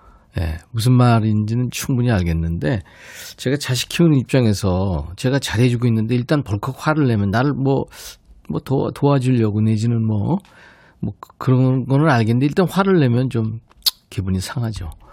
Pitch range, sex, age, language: 105-145 Hz, male, 40-59, Korean